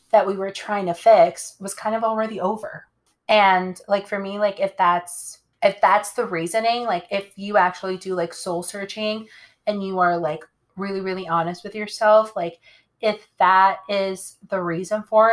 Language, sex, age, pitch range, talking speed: English, female, 20-39, 170-210 Hz, 175 wpm